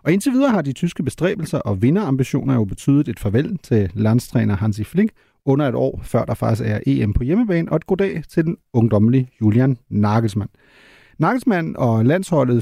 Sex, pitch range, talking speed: male, 120-140 Hz, 180 wpm